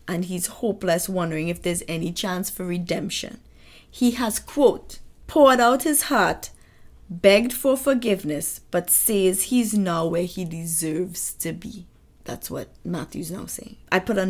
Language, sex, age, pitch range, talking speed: English, female, 20-39, 180-220 Hz, 155 wpm